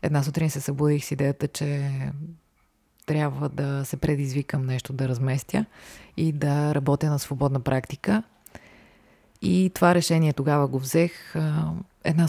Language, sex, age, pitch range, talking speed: Bulgarian, female, 30-49, 135-155 Hz, 130 wpm